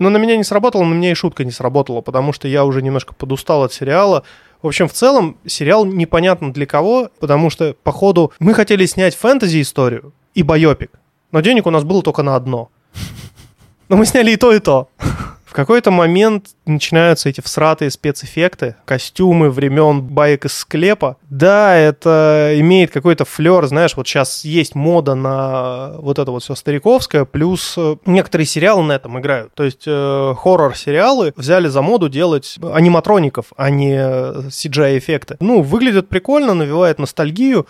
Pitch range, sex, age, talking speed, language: 140-180 Hz, male, 20-39, 165 wpm, Russian